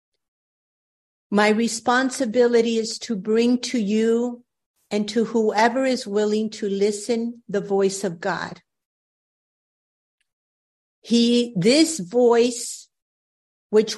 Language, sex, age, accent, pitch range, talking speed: English, female, 50-69, American, 200-240 Hz, 95 wpm